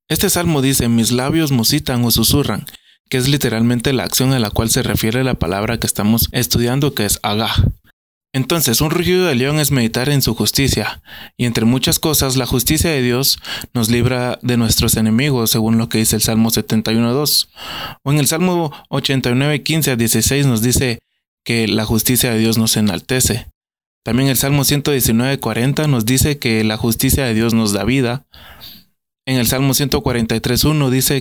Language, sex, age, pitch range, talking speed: Spanish, male, 20-39, 110-135 Hz, 175 wpm